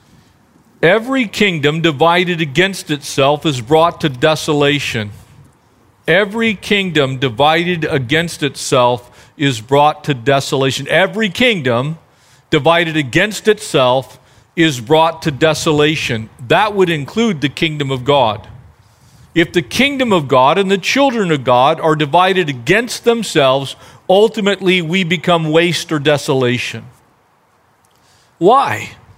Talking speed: 115 wpm